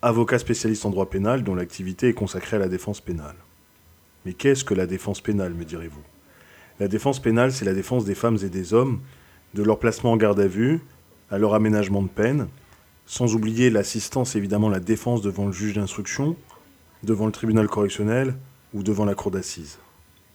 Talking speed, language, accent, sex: 185 wpm, French, French, male